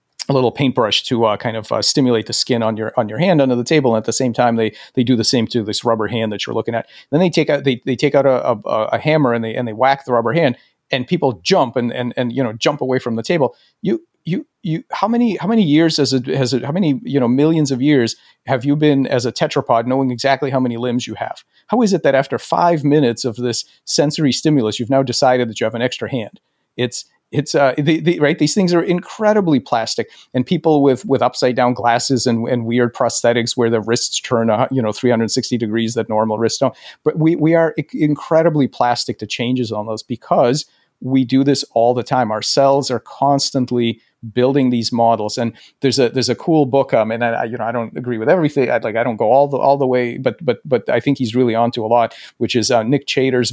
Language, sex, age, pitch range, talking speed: English, male, 40-59, 120-140 Hz, 250 wpm